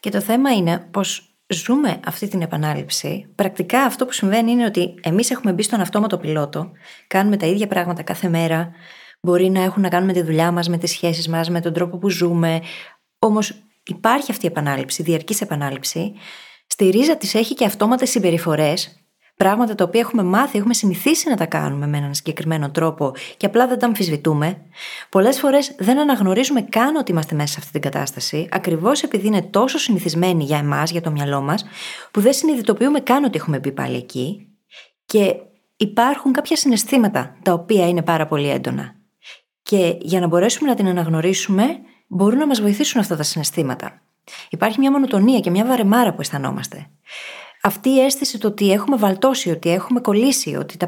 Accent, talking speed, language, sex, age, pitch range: native, 180 wpm, Greek, female, 20-39, 170-235 Hz